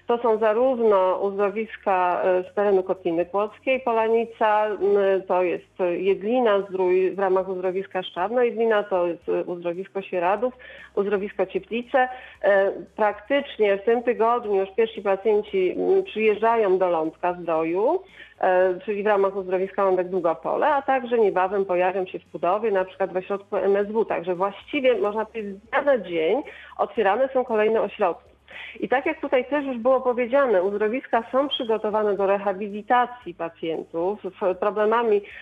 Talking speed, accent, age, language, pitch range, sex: 135 wpm, native, 40-59, Polish, 190-240 Hz, female